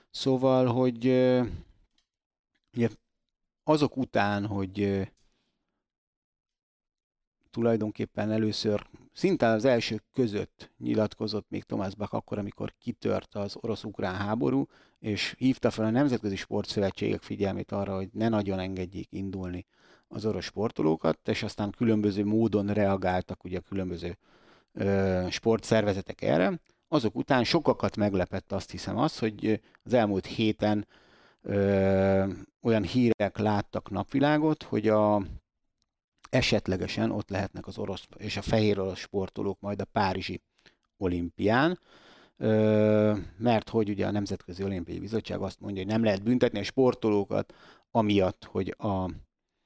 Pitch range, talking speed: 95-115 Hz, 115 wpm